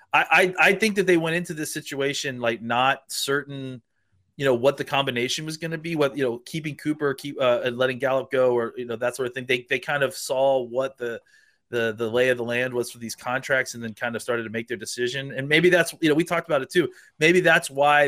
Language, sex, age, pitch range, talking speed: English, male, 30-49, 120-145 Hz, 255 wpm